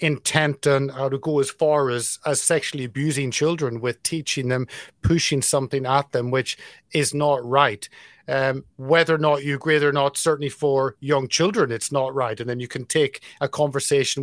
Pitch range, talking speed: 140-170 Hz, 190 wpm